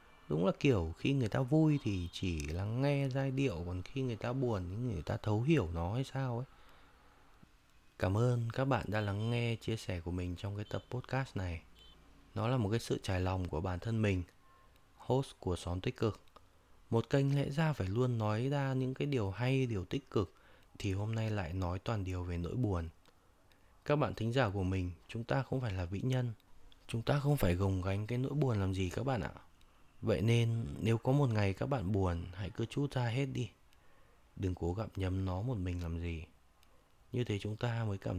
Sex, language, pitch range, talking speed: male, Vietnamese, 90-125 Hz, 220 wpm